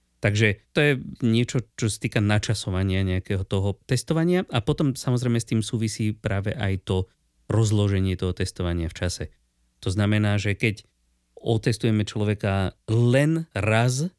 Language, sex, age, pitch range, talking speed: Slovak, male, 30-49, 95-120 Hz, 135 wpm